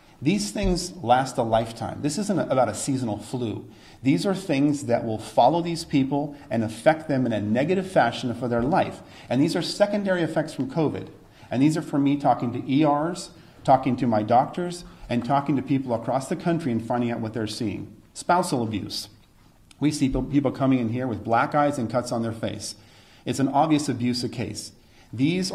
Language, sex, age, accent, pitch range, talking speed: English, male, 40-59, American, 110-145 Hz, 195 wpm